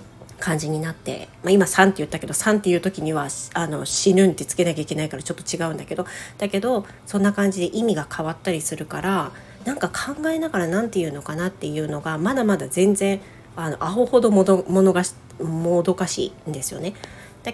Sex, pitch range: female, 155-195 Hz